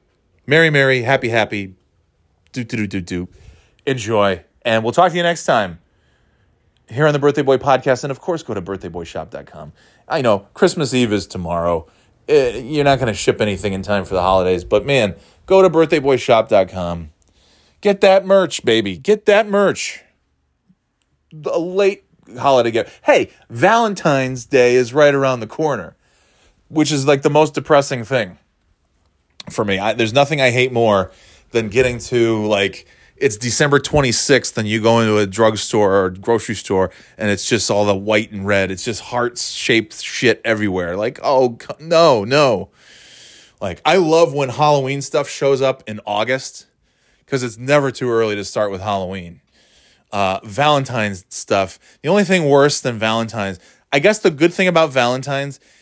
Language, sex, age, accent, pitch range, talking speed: English, male, 30-49, American, 100-140 Hz, 165 wpm